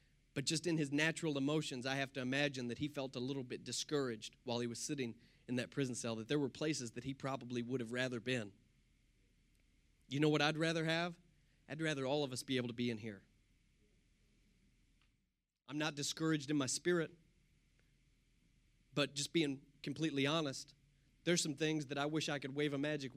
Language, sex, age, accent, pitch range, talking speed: English, male, 30-49, American, 120-150 Hz, 195 wpm